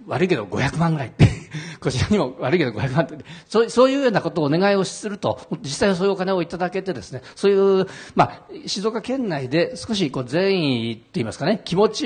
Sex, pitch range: male, 120-175 Hz